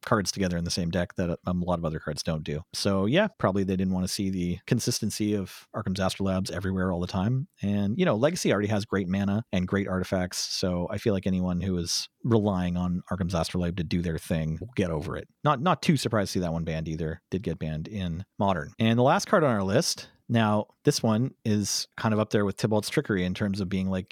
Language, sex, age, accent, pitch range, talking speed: English, male, 40-59, American, 90-120 Hz, 245 wpm